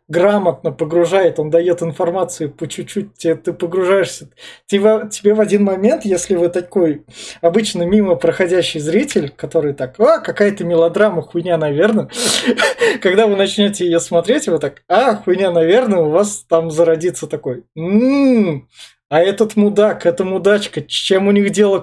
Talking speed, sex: 145 wpm, male